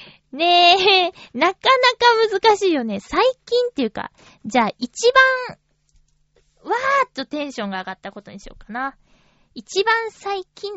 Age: 20-39